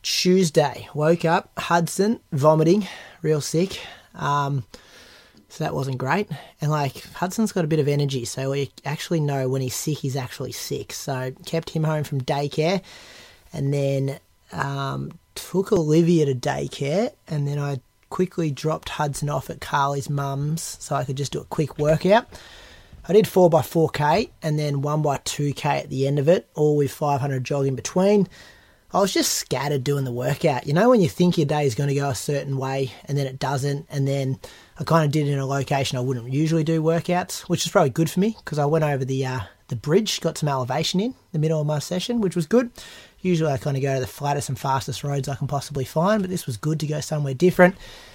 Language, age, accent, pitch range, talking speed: English, 20-39, Australian, 135-165 Hz, 210 wpm